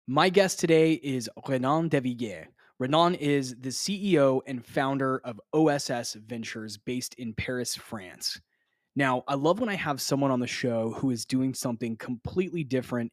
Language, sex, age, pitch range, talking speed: English, male, 20-39, 125-145 Hz, 160 wpm